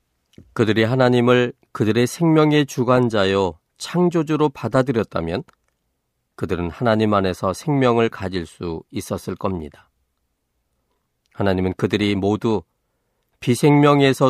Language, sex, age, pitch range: Korean, male, 40-59, 95-130 Hz